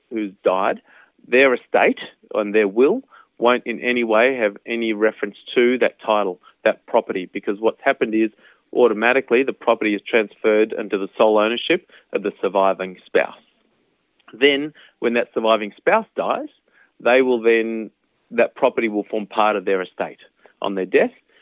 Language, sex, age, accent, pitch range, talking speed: English, male, 30-49, Australian, 100-125 Hz, 155 wpm